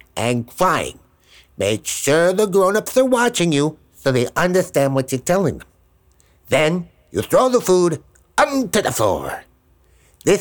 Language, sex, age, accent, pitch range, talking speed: English, male, 60-79, American, 130-205 Hz, 145 wpm